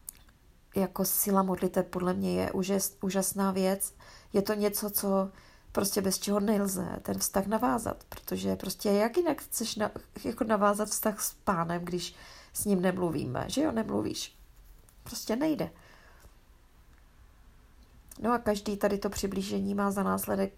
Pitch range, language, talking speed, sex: 180-205 Hz, Czech, 135 wpm, female